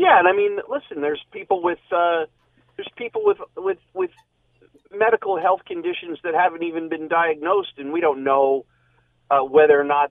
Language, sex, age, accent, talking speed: English, male, 40-59, American, 180 wpm